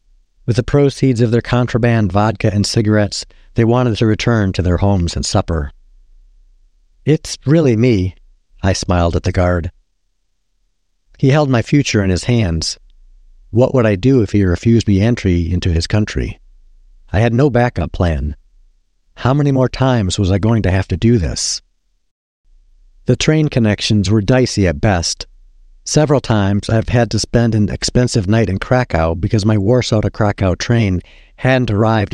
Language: English